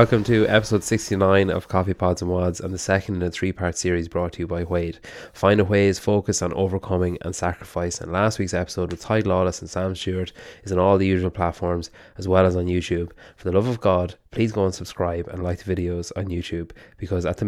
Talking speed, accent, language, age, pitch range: 235 wpm, Irish, English, 20-39, 85-95 Hz